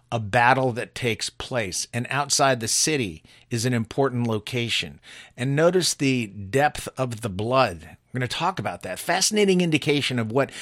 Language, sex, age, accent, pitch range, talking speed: English, male, 50-69, American, 120-150 Hz, 170 wpm